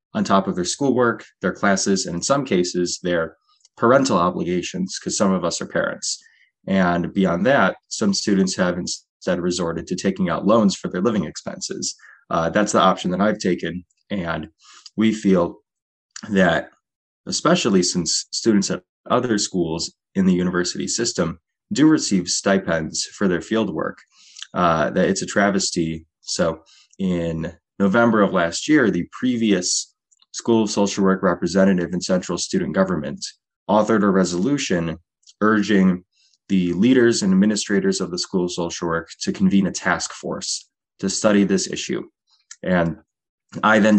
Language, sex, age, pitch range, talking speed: English, male, 20-39, 90-115 Hz, 155 wpm